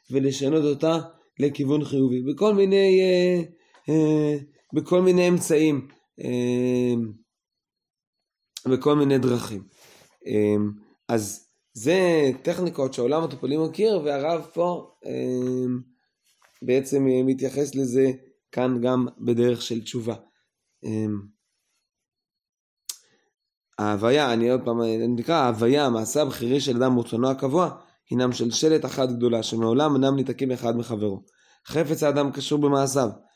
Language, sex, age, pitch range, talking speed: Hebrew, male, 20-39, 120-155 Hz, 110 wpm